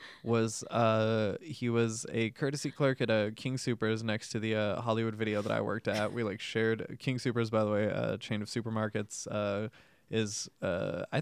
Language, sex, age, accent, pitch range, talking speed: English, male, 20-39, American, 105-120 Hz, 200 wpm